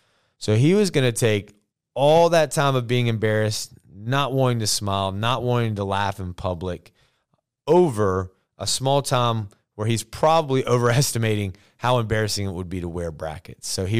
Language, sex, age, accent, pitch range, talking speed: English, male, 30-49, American, 95-130 Hz, 170 wpm